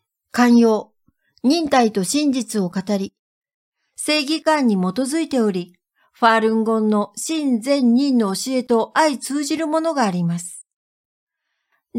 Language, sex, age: Japanese, female, 60-79